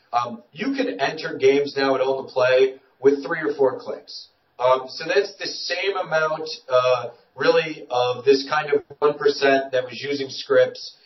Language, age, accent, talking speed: English, 30-49, American, 175 wpm